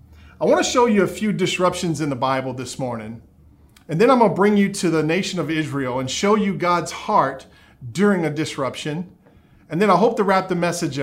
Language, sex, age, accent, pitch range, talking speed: English, male, 40-59, American, 155-195 Hz, 210 wpm